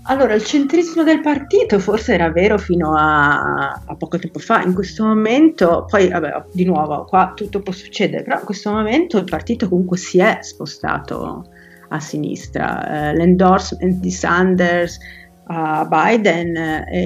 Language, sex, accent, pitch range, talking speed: Italian, female, native, 160-195 Hz, 150 wpm